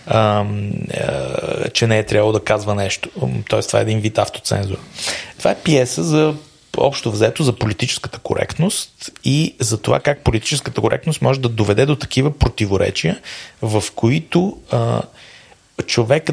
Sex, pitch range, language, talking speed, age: male, 110-135 Hz, Bulgarian, 140 wpm, 30-49